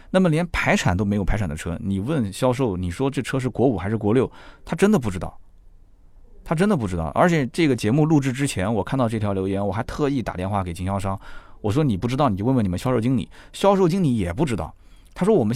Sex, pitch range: male, 95-140 Hz